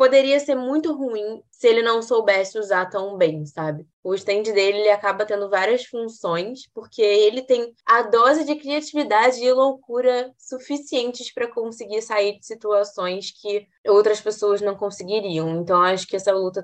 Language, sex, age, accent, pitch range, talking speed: Portuguese, female, 20-39, Brazilian, 180-235 Hz, 160 wpm